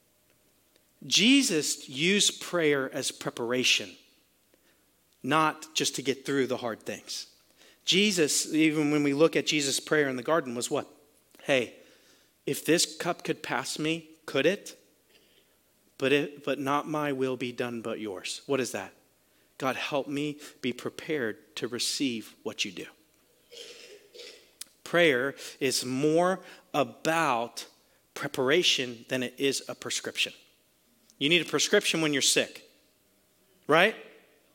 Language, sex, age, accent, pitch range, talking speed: English, male, 40-59, American, 145-215 Hz, 130 wpm